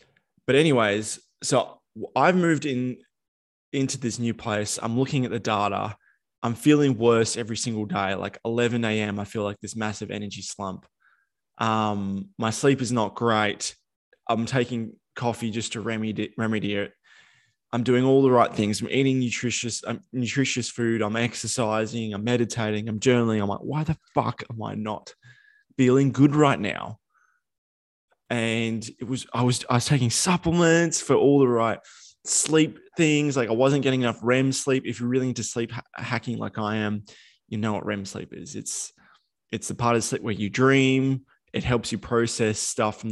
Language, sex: English, male